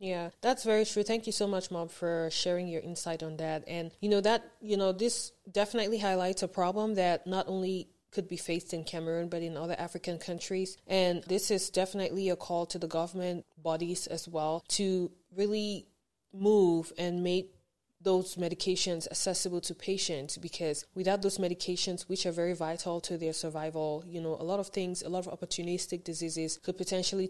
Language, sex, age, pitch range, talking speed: English, female, 20-39, 160-185 Hz, 185 wpm